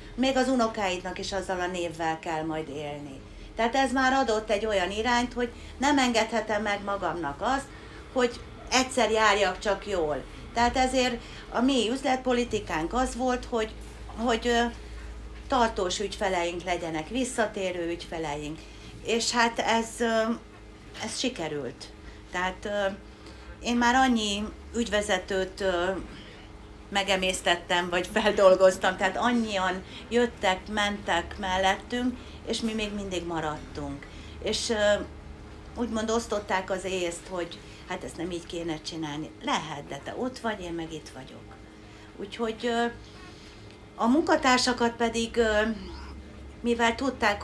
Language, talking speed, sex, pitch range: Hungarian, 120 wpm, female, 170-230 Hz